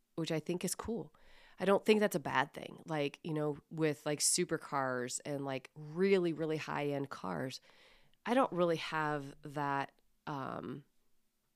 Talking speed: 155 wpm